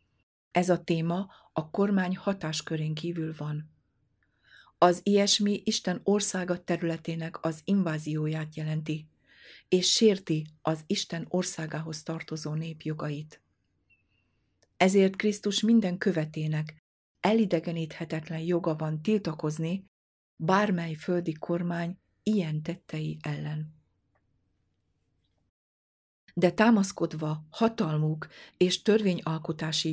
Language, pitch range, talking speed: Hungarian, 155-185 Hz, 85 wpm